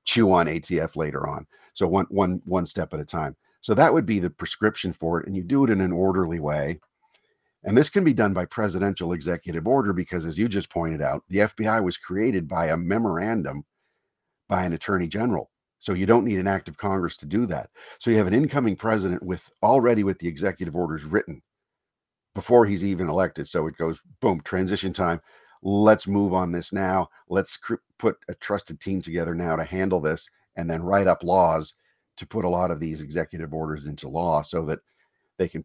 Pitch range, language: 85-100 Hz, English